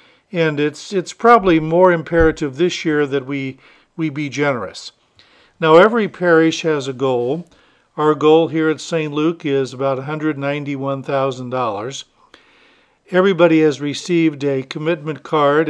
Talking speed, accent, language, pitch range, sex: 130 wpm, American, English, 140-170 Hz, male